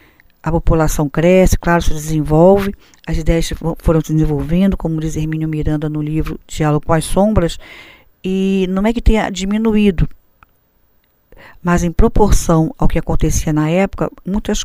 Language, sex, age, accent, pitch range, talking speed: Portuguese, female, 50-69, Brazilian, 155-200 Hz, 150 wpm